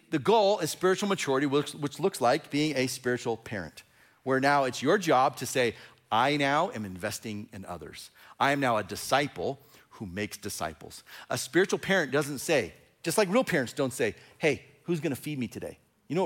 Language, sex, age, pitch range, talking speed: English, male, 40-59, 115-165 Hz, 195 wpm